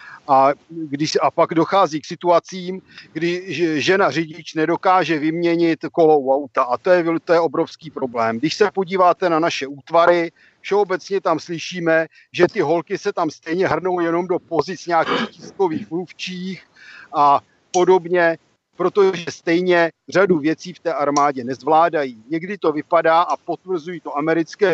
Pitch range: 150-180 Hz